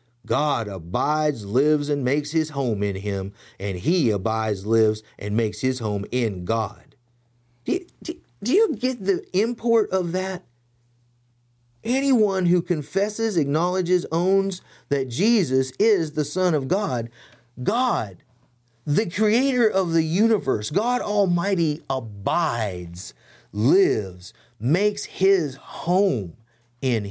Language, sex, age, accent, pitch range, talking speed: English, male, 30-49, American, 110-175 Hz, 115 wpm